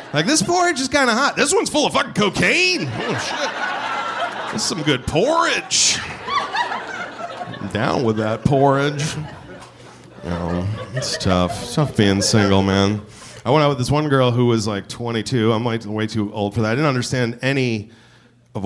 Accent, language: American, English